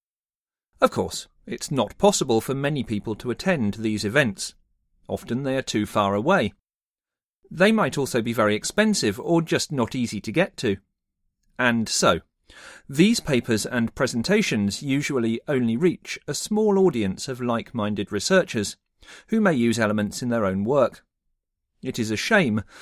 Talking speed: 155 wpm